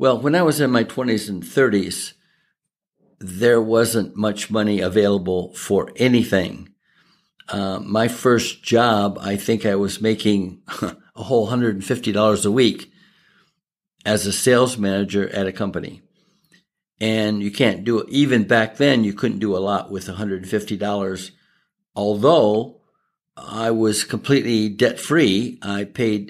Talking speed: 135 wpm